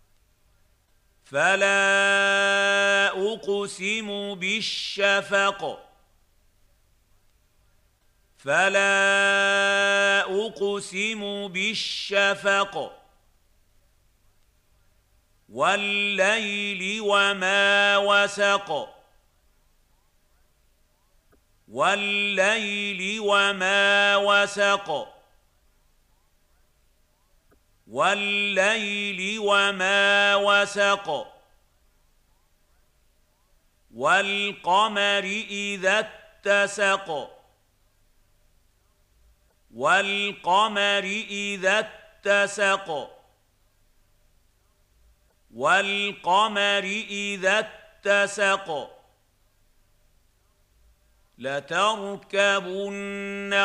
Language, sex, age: Arabic, male, 50-69